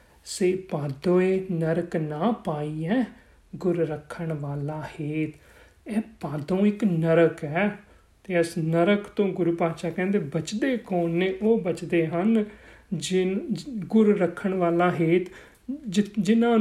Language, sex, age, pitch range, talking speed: Punjabi, male, 40-59, 165-225 Hz, 120 wpm